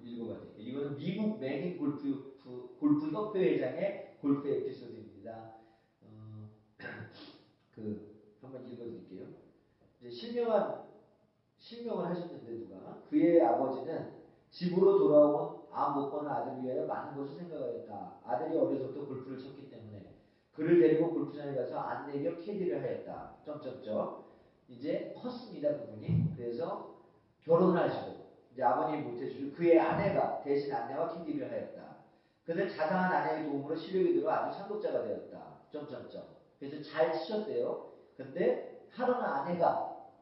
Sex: male